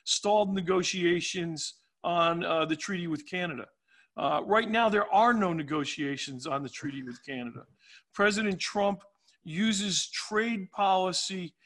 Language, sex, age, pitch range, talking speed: English, male, 50-69, 170-205 Hz, 130 wpm